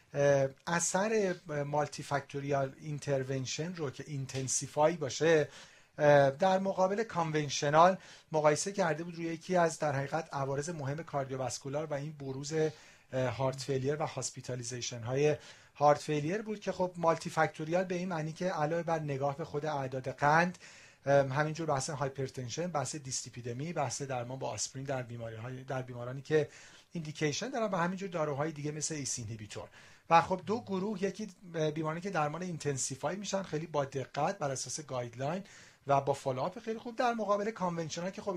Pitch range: 140-170 Hz